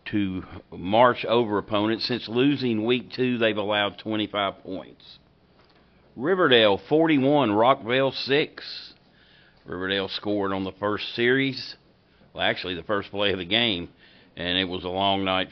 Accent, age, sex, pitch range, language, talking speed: American, 50-69, male, 90-125 Hz, English, 140 wpm